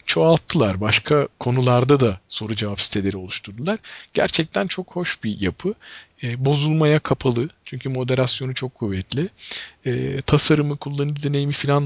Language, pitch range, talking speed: Turkish, 120-165 Hz, 125 wpm